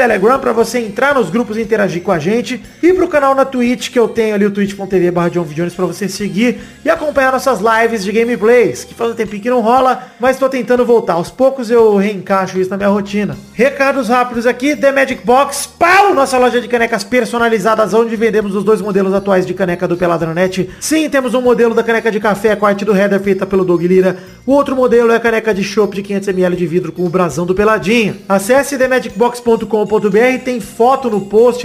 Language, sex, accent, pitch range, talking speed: Portuguese, male, Brazilian, 200-245 Hz, 210 wpm